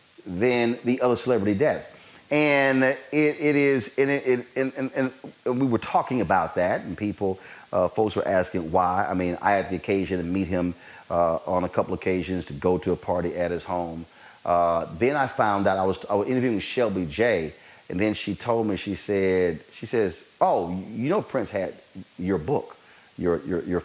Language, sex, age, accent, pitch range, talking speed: English, male, 30-49, American, 90-110 Hz, 205 wpm